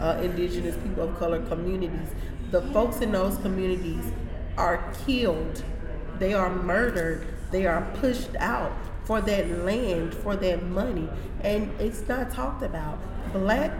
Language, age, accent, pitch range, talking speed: English, 30-49, American, 180-220 Hz, 140 wpm